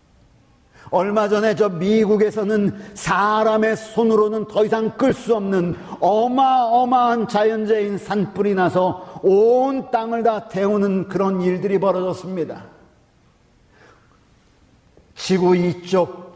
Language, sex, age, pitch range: Korean, male, 50-69, 155-215 Hz